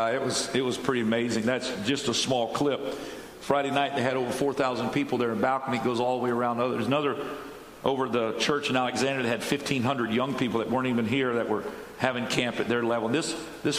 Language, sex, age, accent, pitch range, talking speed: English, male, 50-69, American, 115-140 Hz, 230 wpm